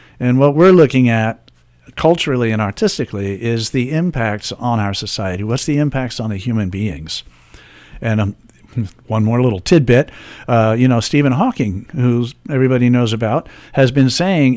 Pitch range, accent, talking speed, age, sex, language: 105-130 Hz, American, 160 wpm, 50-69, male, English